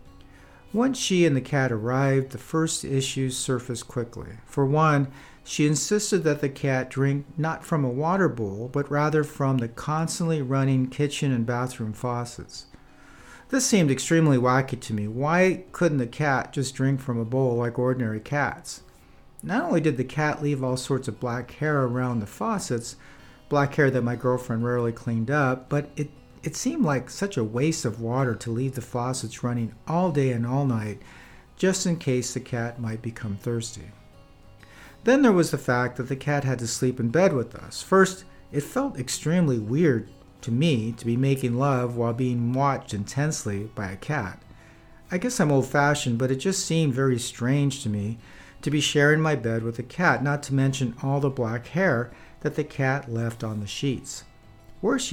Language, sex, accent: English, male, American